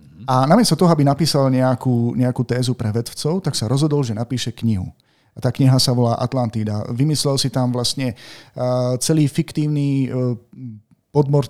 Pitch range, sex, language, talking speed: 120-140 Hz, male, Slovak, 160 wpm